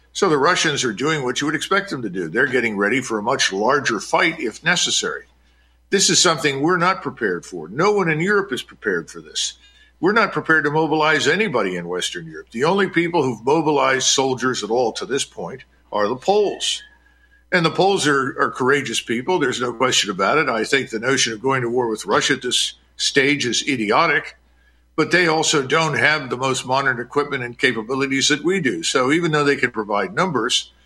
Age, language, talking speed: 50-69, English, 210 wpm